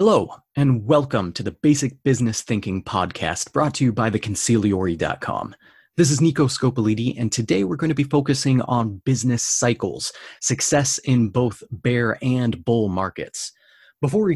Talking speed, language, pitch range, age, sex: 155 wpm, English, 110-140 Hz, 30-49, male